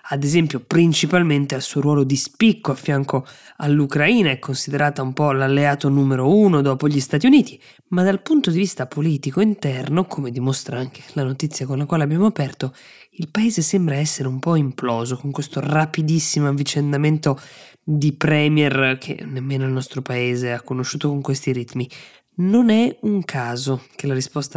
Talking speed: 170 wpm